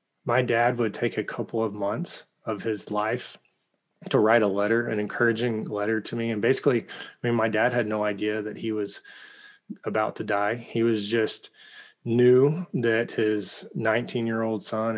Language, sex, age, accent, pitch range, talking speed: English, male, 20-39, American, 105-115 Hz, 170 wpm